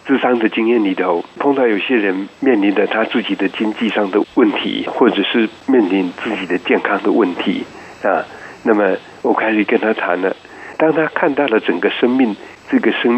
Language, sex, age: Chinese, male, 60-79